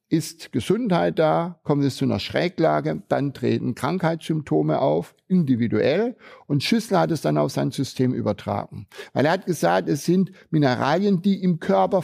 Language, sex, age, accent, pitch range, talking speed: German, male, 60-79, German, 130-190 Hz, 160 wpm